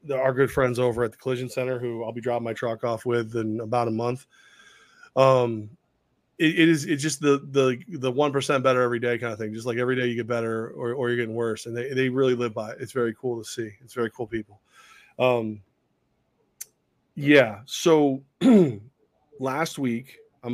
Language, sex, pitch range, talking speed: English, male, 120-150 Hz, 205 wpm